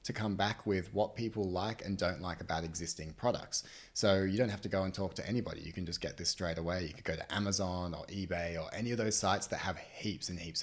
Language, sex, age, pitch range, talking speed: English, male, 20-39, 90-110 Hz, 265 wpm